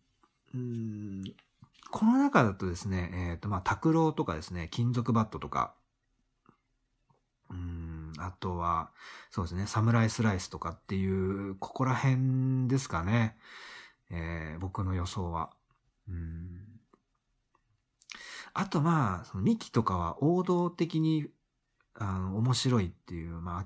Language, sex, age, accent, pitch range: Japanese, male, 40-59, native, 95-160 Hz